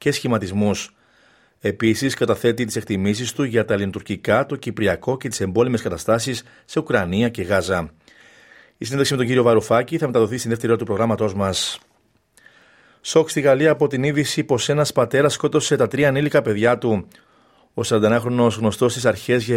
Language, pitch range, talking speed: Greek, 105-135 Hz, 160 wpm